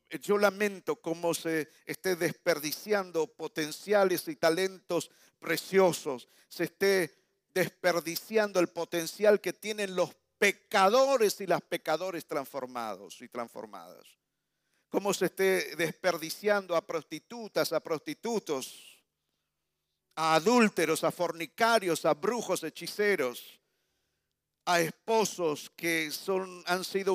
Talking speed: 100 wpm